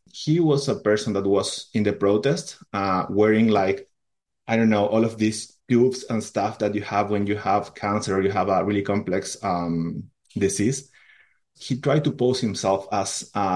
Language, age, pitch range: English, 30-49, 95-115 Hz